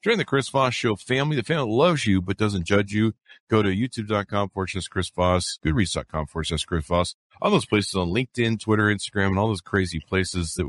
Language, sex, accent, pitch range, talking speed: English, male, American, 90-125 Hz, 210 wpm